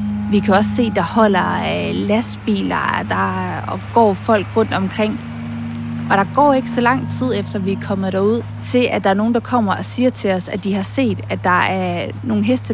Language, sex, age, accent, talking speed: Danish, female, 20-39, native, 210 wpm